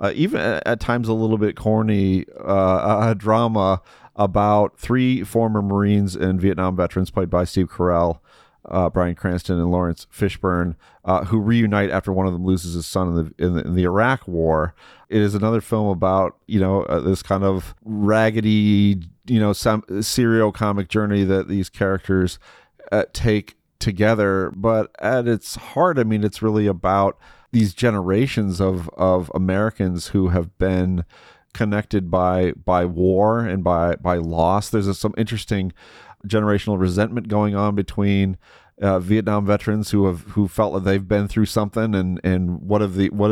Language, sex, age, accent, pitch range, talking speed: English, male, 40-59, American, 95-105 Hz, 170 wpm